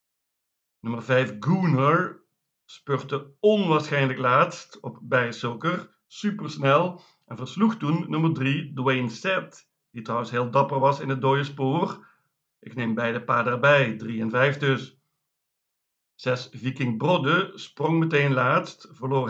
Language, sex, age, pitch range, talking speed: Dutch, male, 50-69, 130-160 Hz, 130 wpm